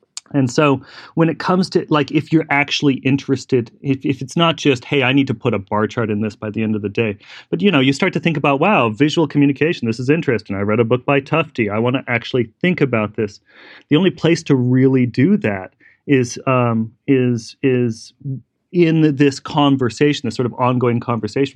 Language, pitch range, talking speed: English, 115-140 Hz, 225 wpm